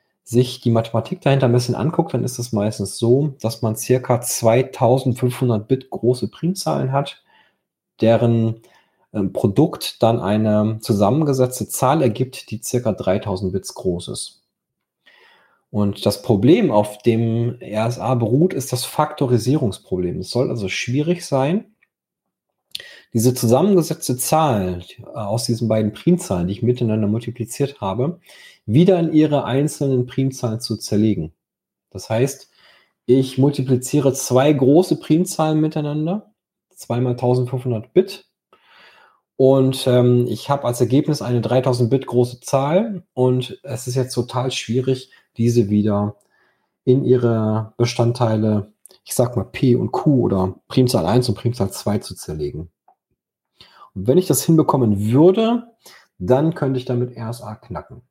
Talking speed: 130 wpm